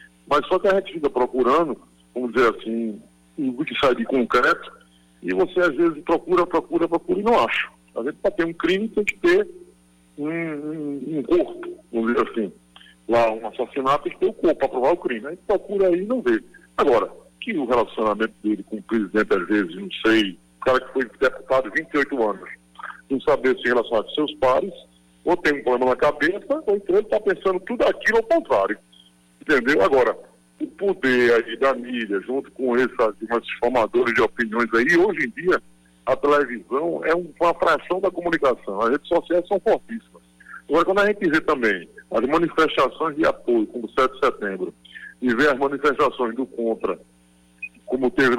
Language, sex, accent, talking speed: Portuguese, male, Brazilian, 195 wpm